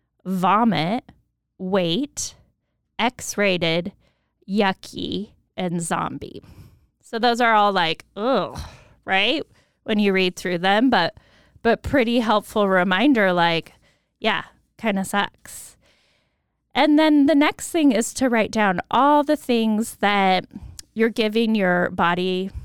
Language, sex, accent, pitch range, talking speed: English, female, American, 185-230 Hz, 120 wpm